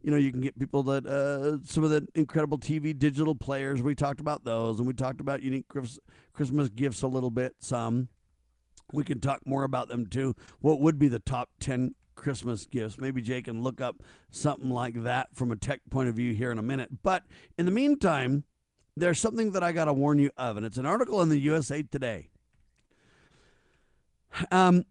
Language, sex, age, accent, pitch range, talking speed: English, male, 50-69, American, 125-175 Hz, 205 wpm